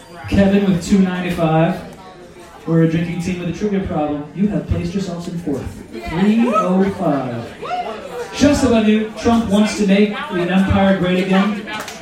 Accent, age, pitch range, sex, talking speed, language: American, 30-49, 170-210 Hz, male, 145 wpm, English